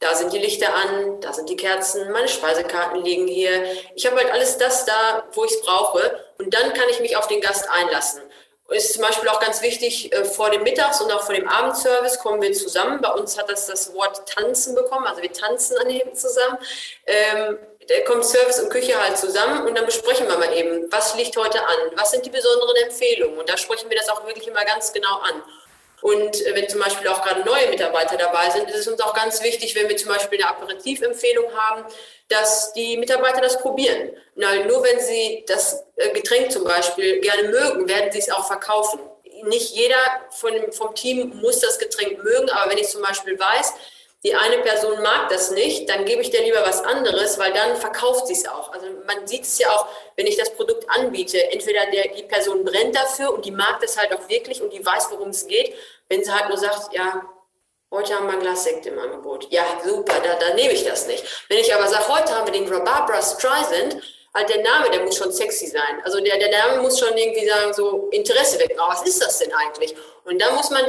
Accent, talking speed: German, 225 wpm